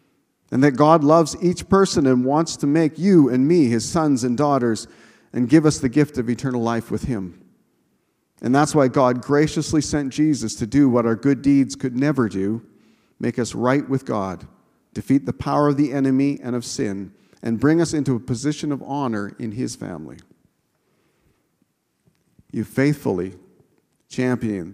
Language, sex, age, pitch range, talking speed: English, male, 40-59, 115-140 Hz, 170 wpm